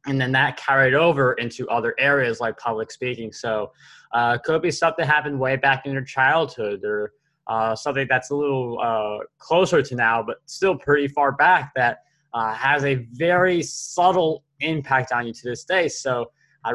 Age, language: 20-39, English